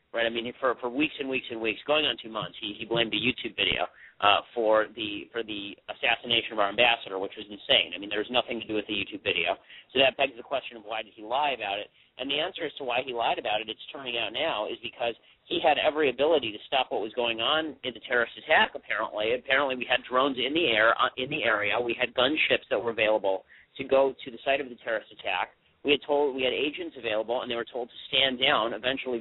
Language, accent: English, American